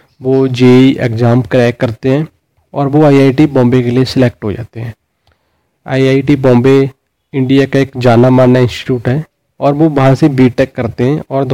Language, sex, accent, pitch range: Hindi, male, native, 125-140 Hz